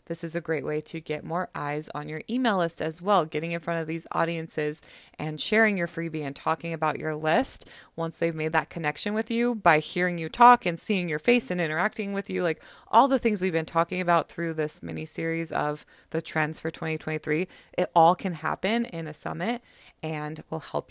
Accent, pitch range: American, 160-205 Hz